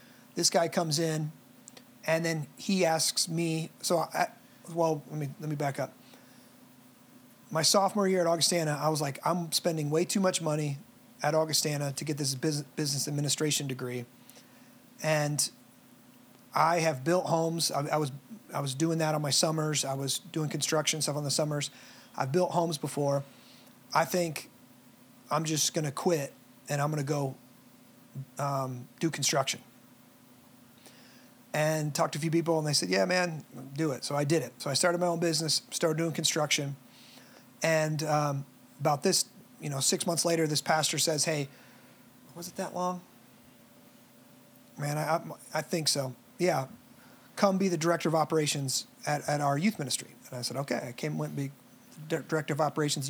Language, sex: English, male